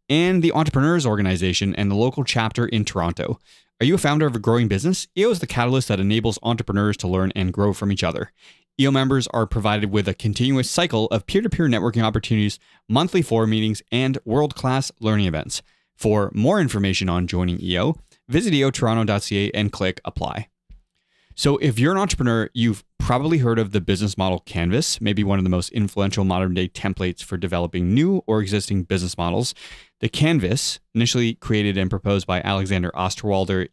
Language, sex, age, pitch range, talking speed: English, male, 30-49, 95-120 Hz, 180 wpm